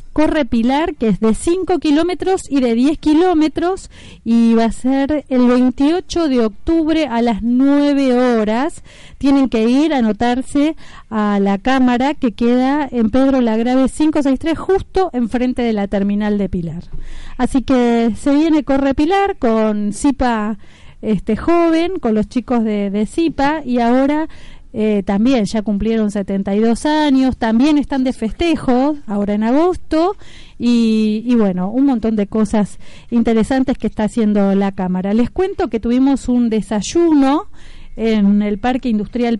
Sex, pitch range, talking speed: female, 225-285 Hz, 150 wpm